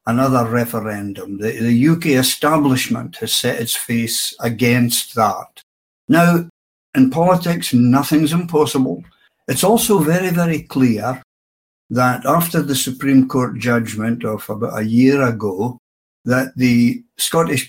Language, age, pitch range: English, 60-79, 115-150 Hz